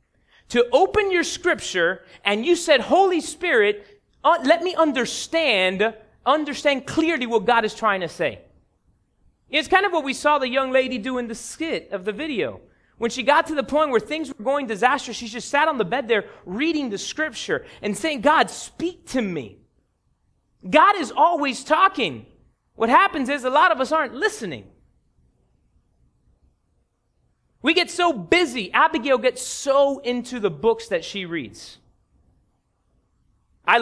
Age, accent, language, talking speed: 30-49, American, English, 160 wpm